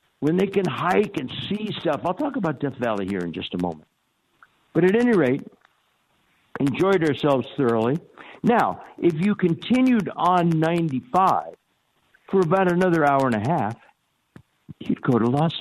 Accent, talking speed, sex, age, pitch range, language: American, 160 wpm, male, 60-79, 115-170 Hz, English